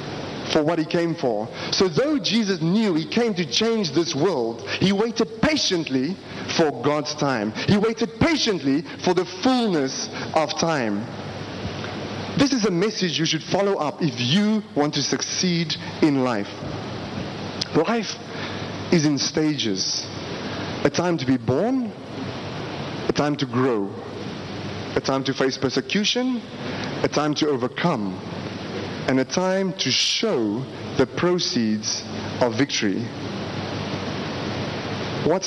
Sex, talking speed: male, 130 wpm